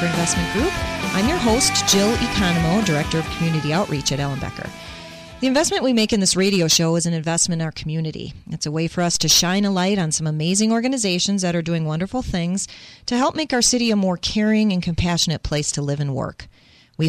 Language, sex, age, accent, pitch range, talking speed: English, female, 40-59, American, 150-200 Hz, 215 wpm